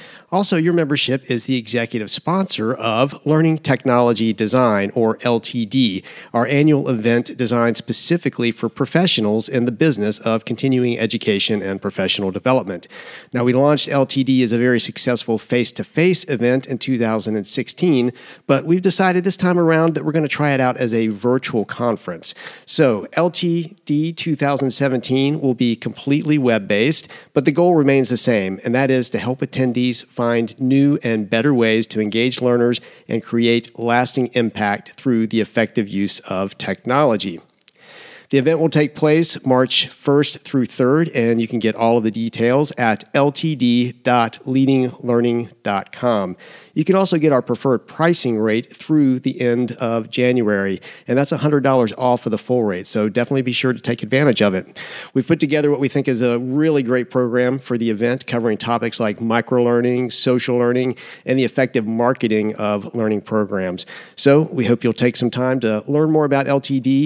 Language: English